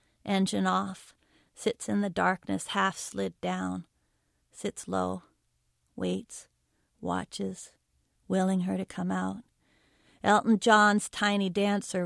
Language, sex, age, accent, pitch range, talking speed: English, female, 40-59, American, 175-205 Hz, 110 wpm